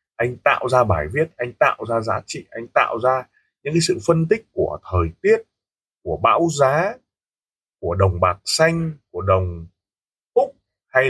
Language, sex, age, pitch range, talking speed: Vietnamese, male, 20-39, 95-145 Hz, 175 wpm